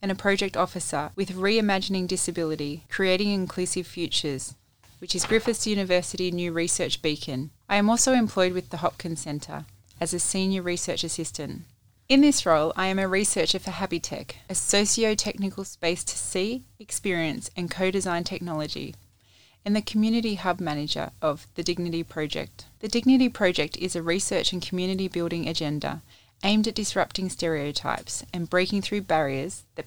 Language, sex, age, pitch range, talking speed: English, female, 20-39, 150-195 Hz, 155 wpm